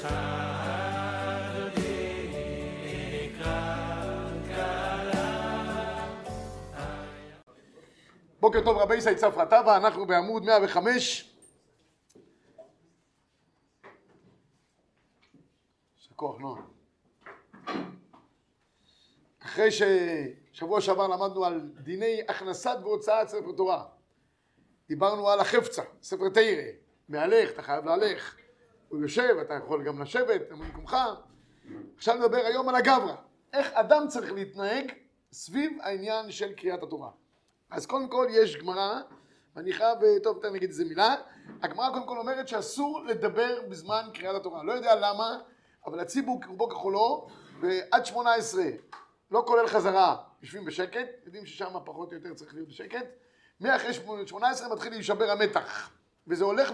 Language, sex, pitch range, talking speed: Hebrew, male, 190-265 Hz, 110 wpm